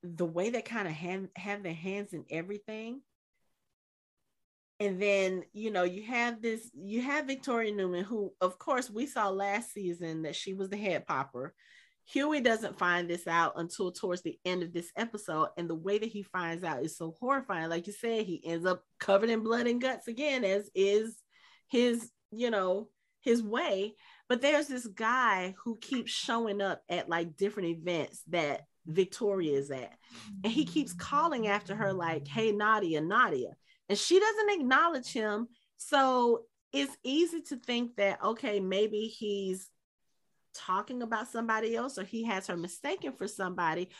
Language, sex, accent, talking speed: English, female, American, 175 wpm